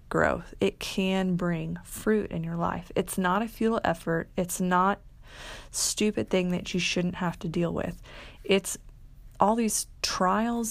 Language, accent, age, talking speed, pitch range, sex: English, American, 20-39, 155 wpm, 170-215 Hz, female